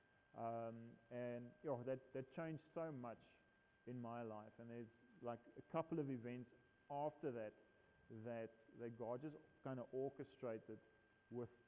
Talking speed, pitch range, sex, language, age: 155 wpm, 115-135 Hz, male, English, 30-49